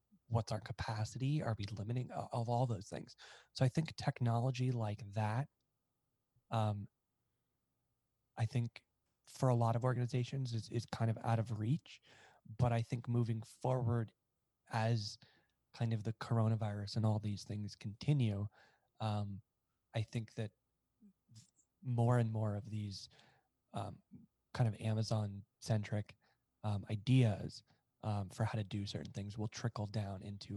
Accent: American